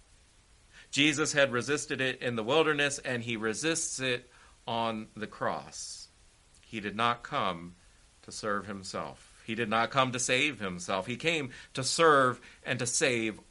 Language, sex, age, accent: English, male, 50-69, American